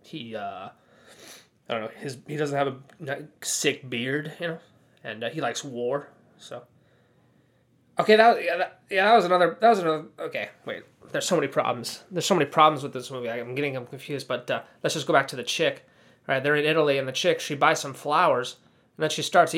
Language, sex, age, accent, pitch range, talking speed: English, male, 20-39, American, 140-175 Hz, 235 wpm